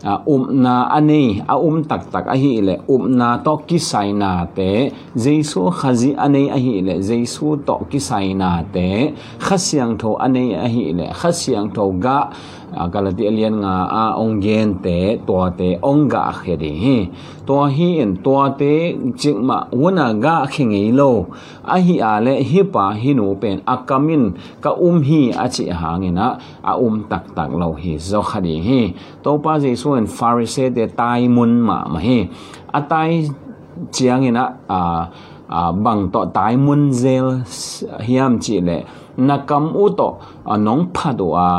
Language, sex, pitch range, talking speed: English, male, 95-140 Hz, 170 wpm